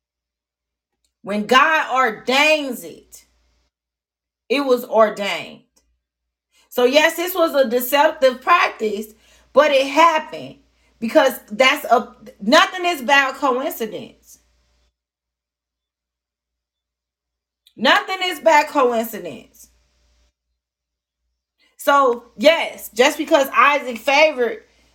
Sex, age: female, 30-49